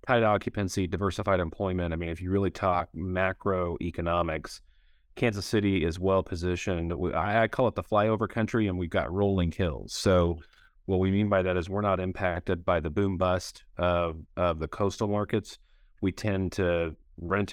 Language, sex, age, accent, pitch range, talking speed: English, male, 30-49, American, 85-100 Hz, 170 wpm